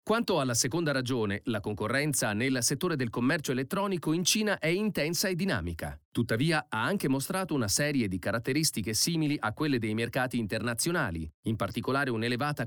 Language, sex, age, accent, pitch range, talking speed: Italian, male, 40-59, native, 120-170 Hz, 160 wpm